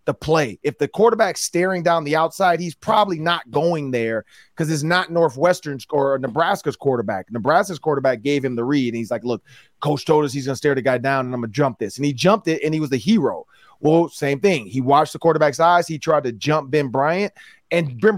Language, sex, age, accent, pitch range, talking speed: English, male, 30-49, American, 140-195 Hz, 230 wpm